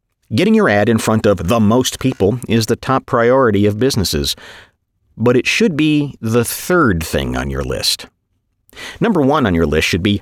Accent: American